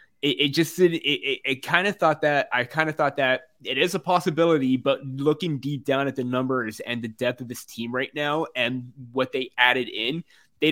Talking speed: 230 wpm